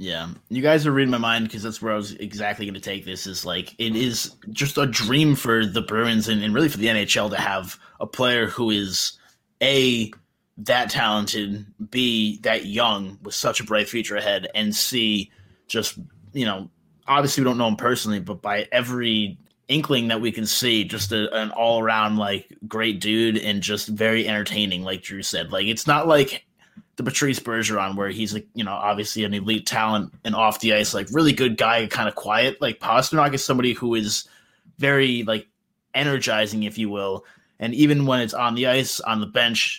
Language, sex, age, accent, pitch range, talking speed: English, male, 20-39, American, 105-125 Hz, 200 wpm